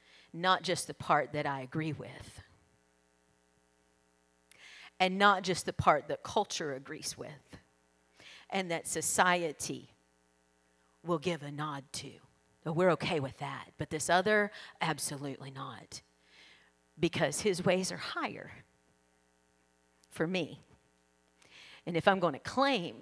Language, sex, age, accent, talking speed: English, female, 40-59, American, 125 wpm